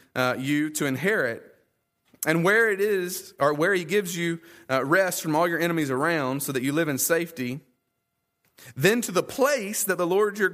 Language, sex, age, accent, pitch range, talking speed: English, male, 30-49, American, 130-185 Hz, 195 wpm